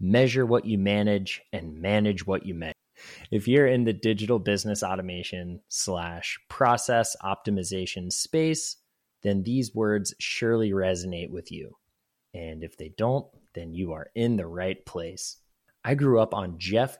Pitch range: 95-125 Hz